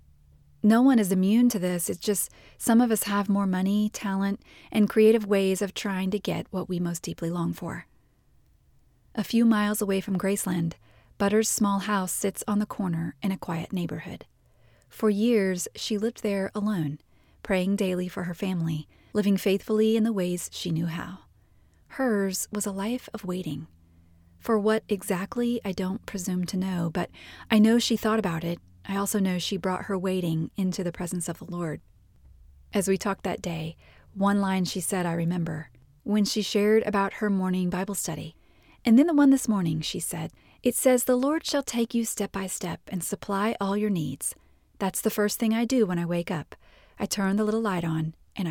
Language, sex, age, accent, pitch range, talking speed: English, female, 30-49, American, 170-215 Hz, 195 wpm